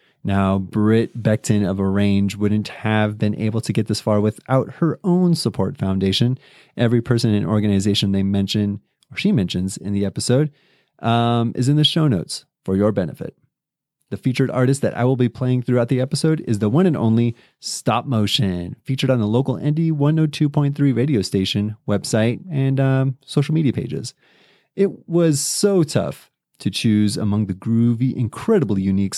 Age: 30-49